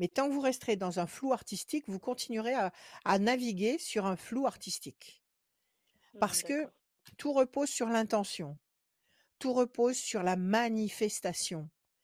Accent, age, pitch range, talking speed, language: French, 60-79, 190-255 Hz, 145 wpm, French